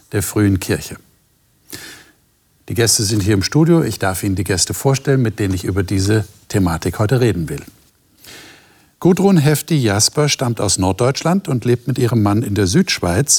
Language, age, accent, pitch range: German, 60-79, German, 100-145 Hz